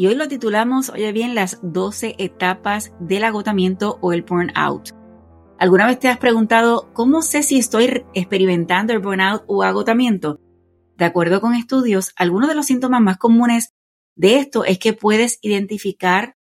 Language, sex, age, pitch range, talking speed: Spanish, female, 30-49, 180-225 Hz, 160 wpm